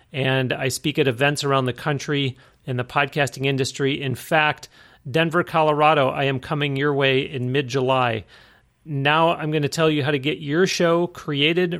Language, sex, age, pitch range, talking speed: English, male, 40-59, 130-155 Hz, 180 wpm